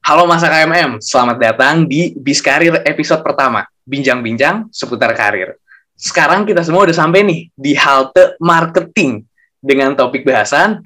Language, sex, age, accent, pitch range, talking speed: Indonesian, male, 20-39, native, 125-160 Hz, 135 wpm